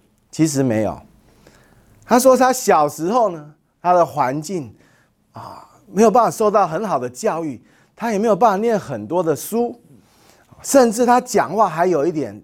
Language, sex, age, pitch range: Chinese, male, 30-49, 145-235 Hz